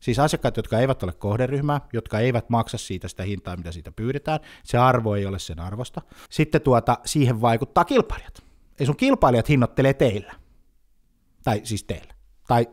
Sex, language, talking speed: male, Finnish, 165 wpm